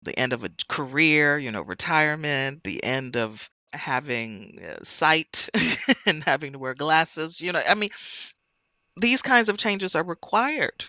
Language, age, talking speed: German, 40-59, 155 wpm